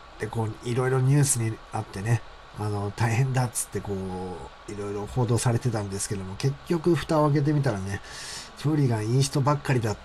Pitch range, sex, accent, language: 95-130 Hz, male, native, Japanese